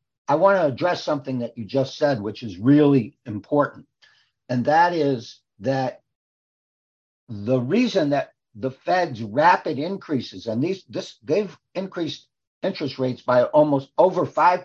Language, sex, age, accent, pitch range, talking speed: English, male, 60-79, American, 125-160 Hz, 145 wpm